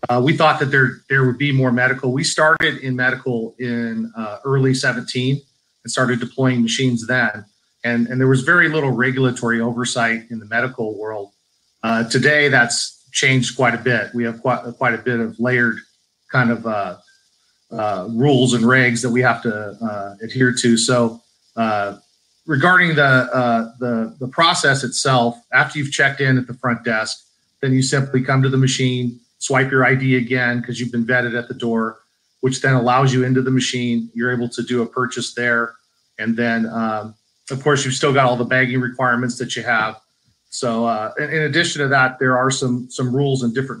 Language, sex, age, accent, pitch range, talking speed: English, male, 40-59, American, 120-135 Hz, 195 wpm